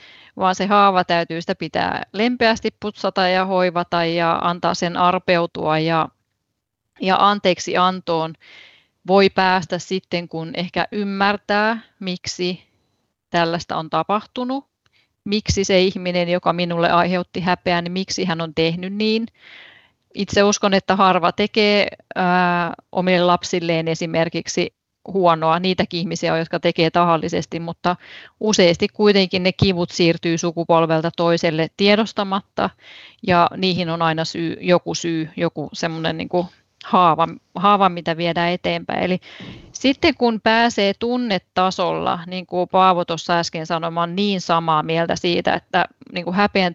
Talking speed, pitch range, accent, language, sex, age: 130 wpm, 170-195 Hz, native, Finnish, female, 30-49